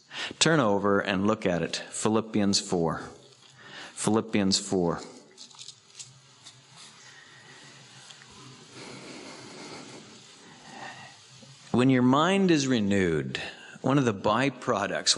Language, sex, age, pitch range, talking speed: English, male, 50-69, 105-160 Hz, 75 wpm